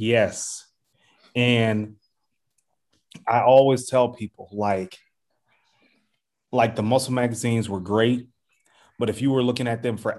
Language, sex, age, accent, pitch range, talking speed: English, male, 30-49, American, 115-140 Hz, 125 wpm